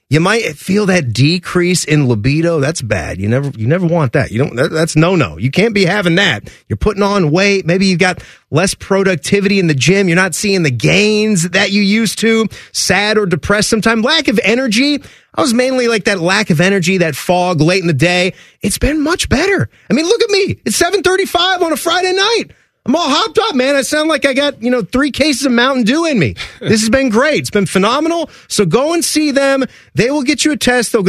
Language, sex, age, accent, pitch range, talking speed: English, male, 30-49, American, 155-230 Hz, 230 wpm